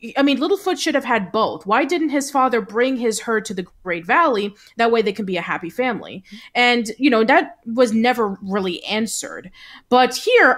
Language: English